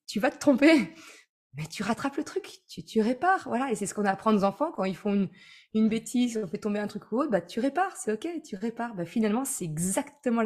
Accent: French